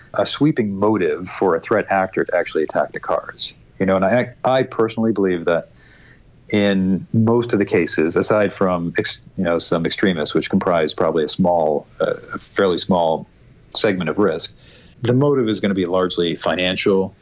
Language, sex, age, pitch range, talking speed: English, male, 40-59, 90-110 Hz, 180 wpm